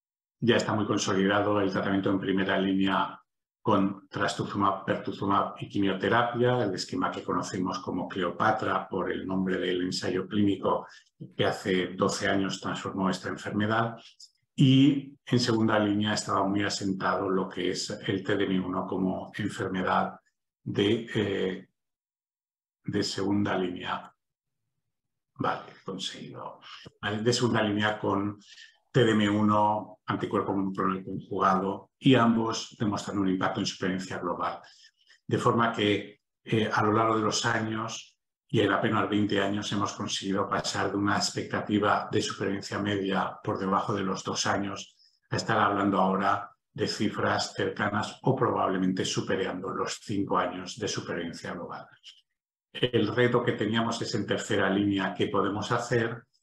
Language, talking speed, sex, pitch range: Spanish, 135 wpm, male, 95-110 Hz